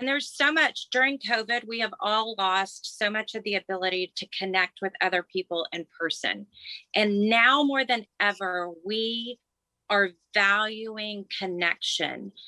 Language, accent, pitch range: English, American, 185-230 Hz